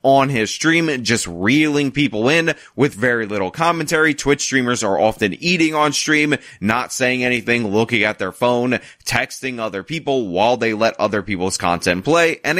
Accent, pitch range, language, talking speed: American, 110-145 Hz, English, 170 wpm